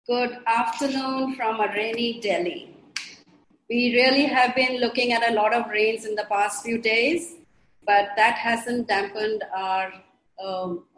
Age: 30-49